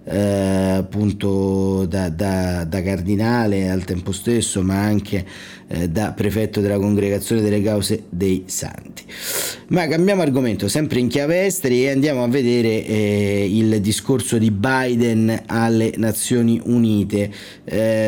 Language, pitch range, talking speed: Italian, 100-120 Hz, 135 wpm